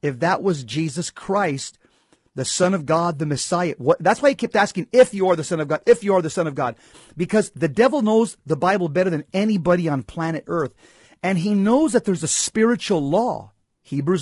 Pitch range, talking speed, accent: 140-195 Hz, 215 wpm, American